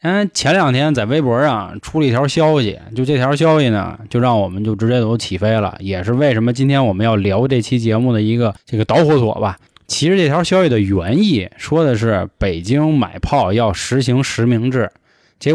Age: 20-39